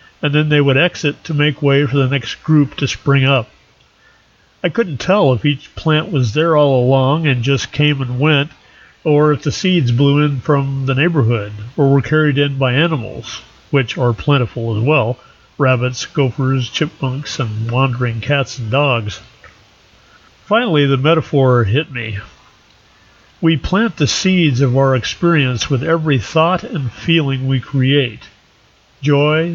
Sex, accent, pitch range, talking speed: male, American, 130-150 Hz, 160 wpm